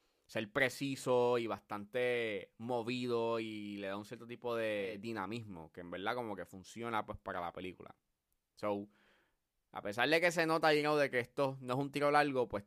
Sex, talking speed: male, 195 wpm